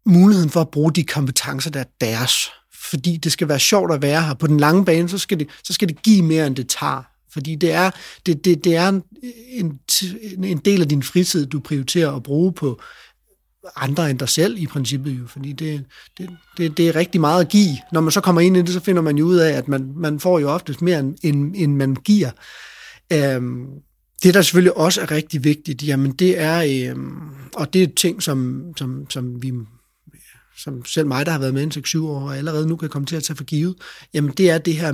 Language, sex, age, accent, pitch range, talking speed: Danish, male, 30-49, native, 140-170 Hz, 235 wpm